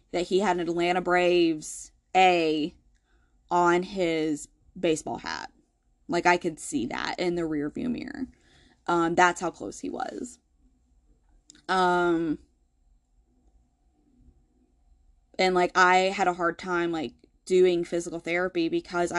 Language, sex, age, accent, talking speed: English, female, 20-39, American, 125 wpm